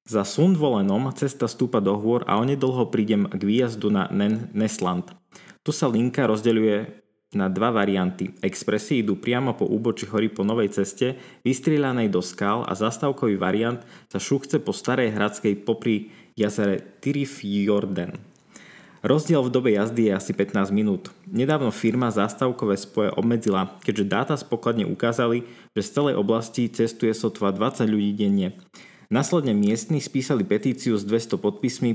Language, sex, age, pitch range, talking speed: Slovak, male, 20-39, 105-130 Hz, 150 wpm